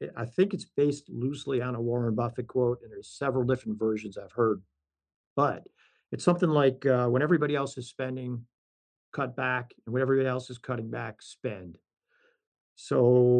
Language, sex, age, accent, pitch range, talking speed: English, male, 50-69, American, 115-140 Hz, 170 wpm